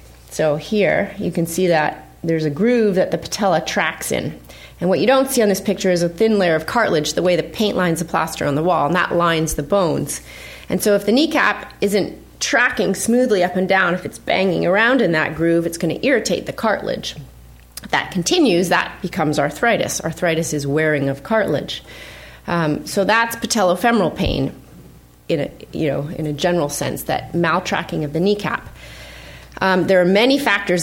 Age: 30-49